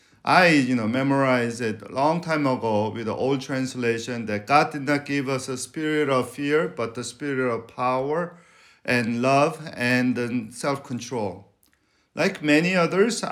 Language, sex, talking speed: English, male, 160 wpm